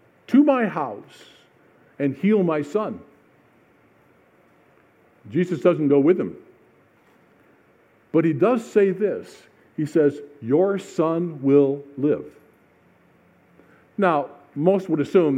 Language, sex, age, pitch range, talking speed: English, male, 50-69, 135-185 Hz, 105 wpm